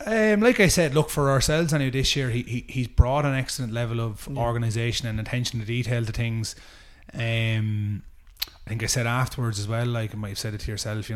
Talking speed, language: 230 wpm, English